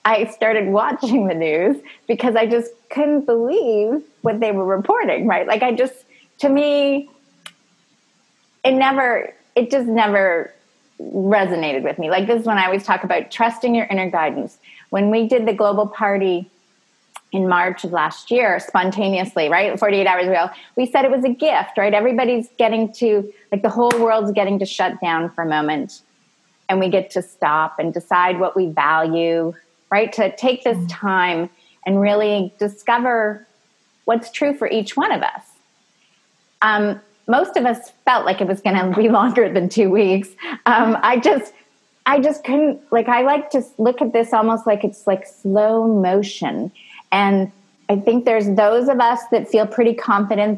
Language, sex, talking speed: English, female, 175 wpm